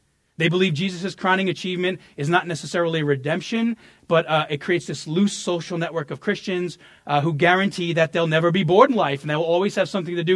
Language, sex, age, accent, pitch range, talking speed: English, male, 30-49, American, 150-190 Hz, 215 wpm